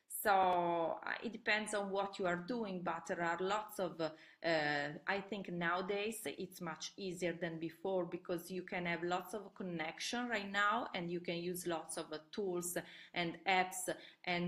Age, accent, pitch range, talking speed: 30-49, Italian, 165-190 Hz, 175 wpm